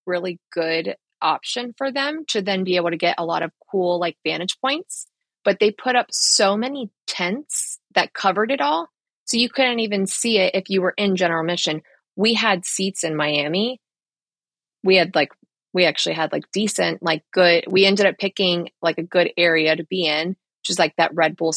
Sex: female